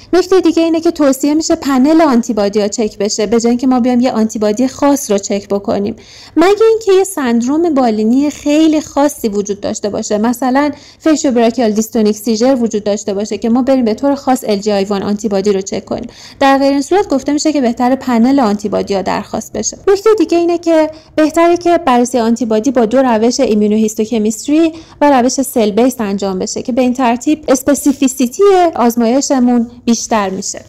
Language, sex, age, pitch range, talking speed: Persian, female, 30-49, 215-280 Hz, 180 wpm